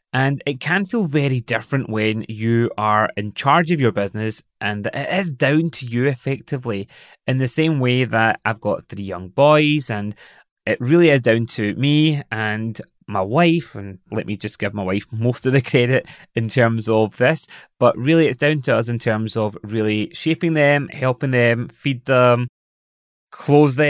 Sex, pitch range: male, 105-145 Hz